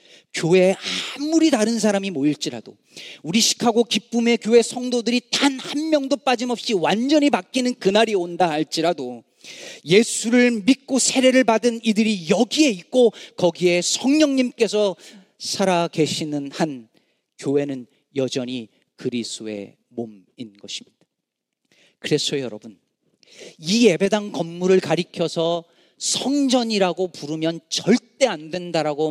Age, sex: 40-59, male